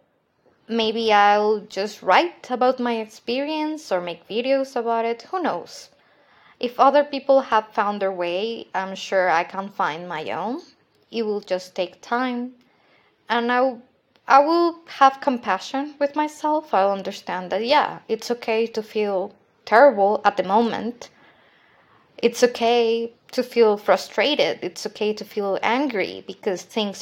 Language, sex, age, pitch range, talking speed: English, female, 20-39, 195-255 Hz, 140 wpm